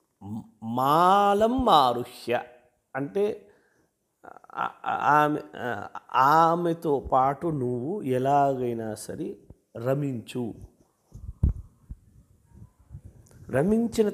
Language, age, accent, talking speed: Telugu, 30-49, native, 45 wpm